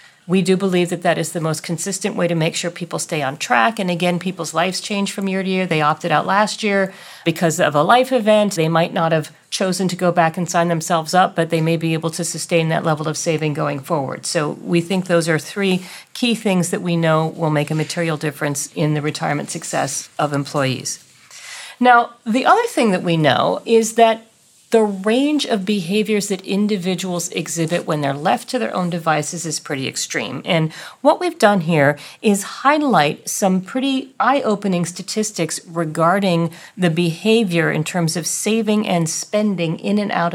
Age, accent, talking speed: 40-59, American, 195 wpm